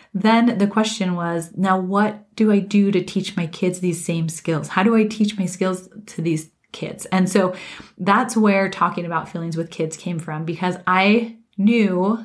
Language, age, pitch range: English, 30-49, 180-225 Hz